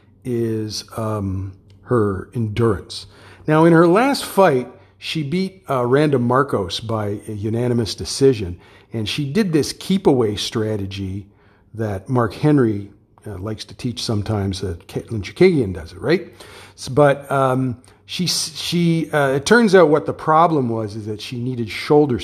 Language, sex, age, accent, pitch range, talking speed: English, male, 50-69, American, 105-145 Hz, 150 wpm